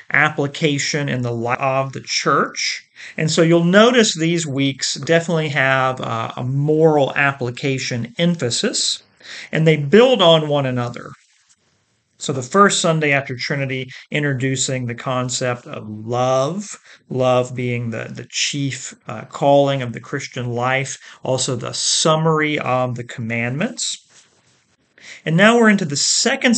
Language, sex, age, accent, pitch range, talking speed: English, male, 40-59, American, 125-160 Hz, 135 wpm